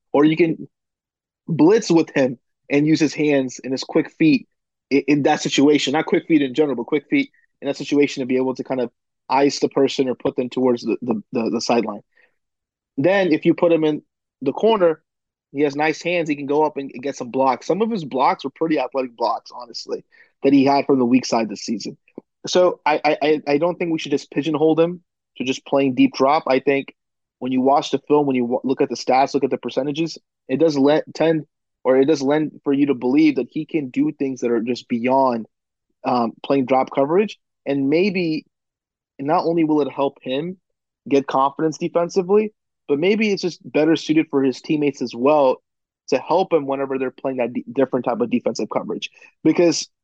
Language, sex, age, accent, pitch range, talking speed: English, male, 30-49, American, 130-160 Hz, 210 wpm